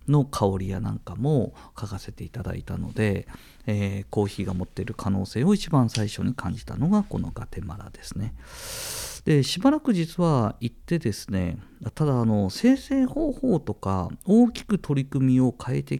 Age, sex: 50-69, male